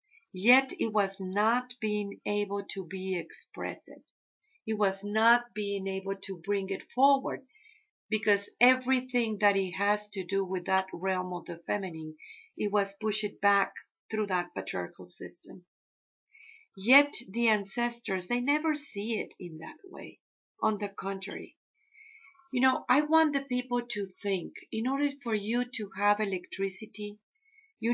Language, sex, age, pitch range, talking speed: English, female, 50-69, 195-250 Hz, 145 wpm